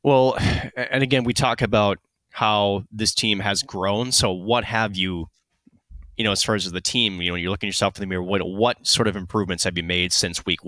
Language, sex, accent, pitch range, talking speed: English, male, American, 90-115 Hz, 230 wpm